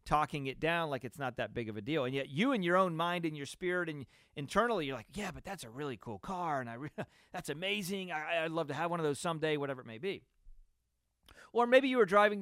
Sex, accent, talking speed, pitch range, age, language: male, American, 265 wpm, 135-185 Hz, 40-59, English